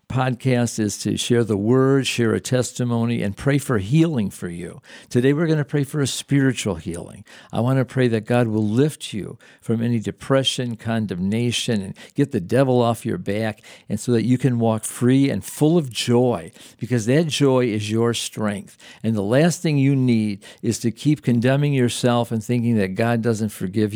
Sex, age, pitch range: male, 50-69, 115-145 Hz